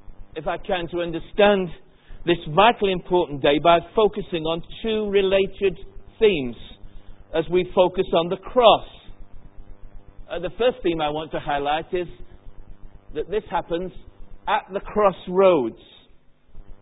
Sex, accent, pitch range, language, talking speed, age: male, British, 125-205 Hz, English, 130 wpm, 50-69